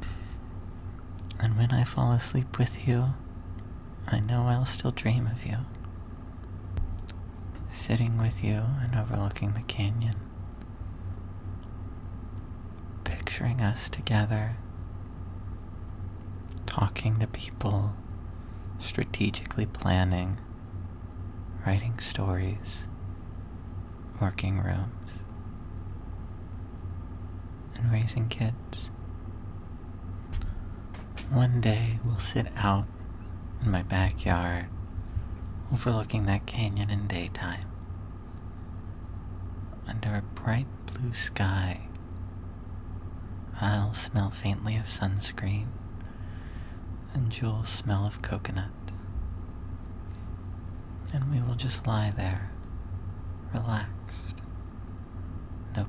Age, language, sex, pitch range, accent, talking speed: 30-49, English, male, 90-105 Hz, American, 75 wpm